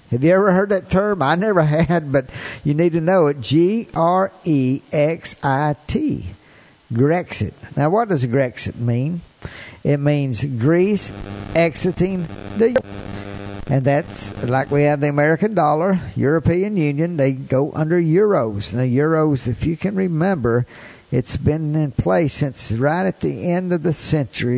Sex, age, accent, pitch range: male, 50-69, American, 130-165 Hz